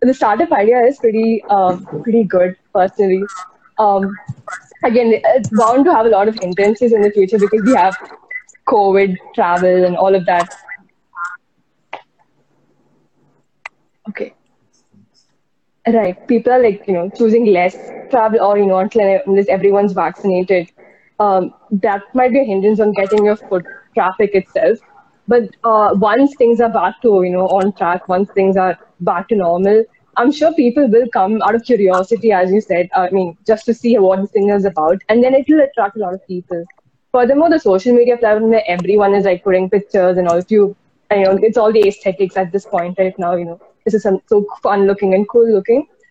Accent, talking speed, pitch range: Indian, 180 wpm, 190-230 Hz